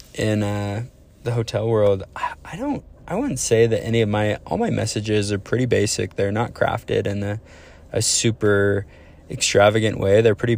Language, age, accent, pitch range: English, 20-39, American, 100-120 Hz